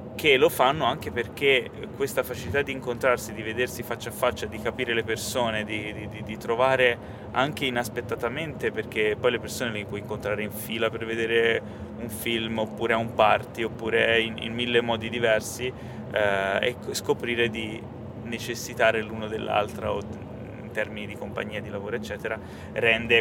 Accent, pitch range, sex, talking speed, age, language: native, 105-115 Hz, male, 160 wpm, 20-39, Italian